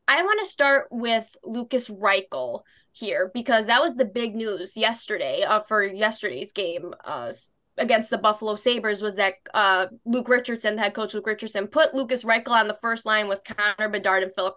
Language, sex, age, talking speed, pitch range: English, female, 10-29, 185 wpm, 210-240 Hz